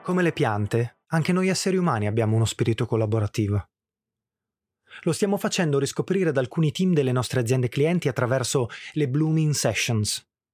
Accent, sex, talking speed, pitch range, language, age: native, male, 150 wpm, 115-155 Hz, Italian, 30-49